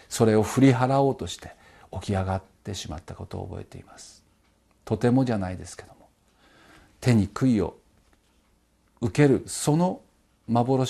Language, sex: Japanese, male